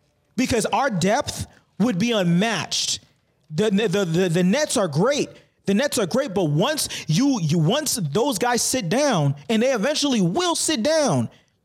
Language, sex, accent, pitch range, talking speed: English, male, American, 165-250 Hz, 170 wpm